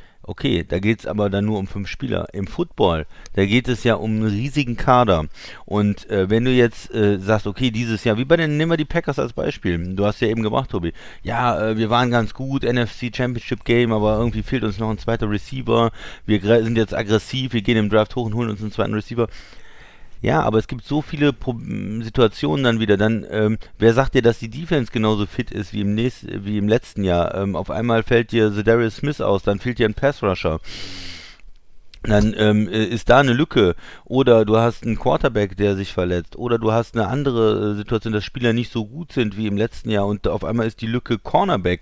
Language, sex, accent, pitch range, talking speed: German, male, German, 105-120 Hz, 225 wpm